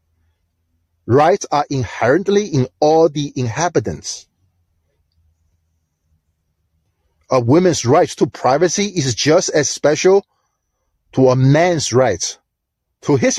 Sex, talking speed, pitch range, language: male, 100 wpm, 115-180 Hz, English